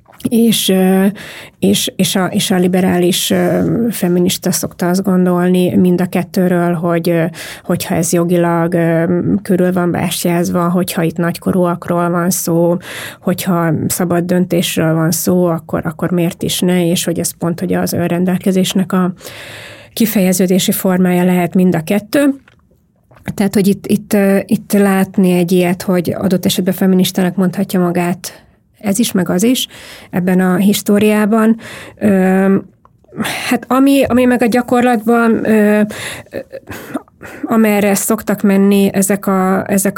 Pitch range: 180-200 Hz